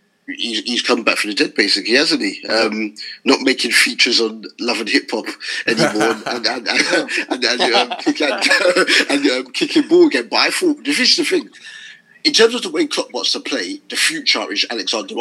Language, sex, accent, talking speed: English, male, British, 175 wpm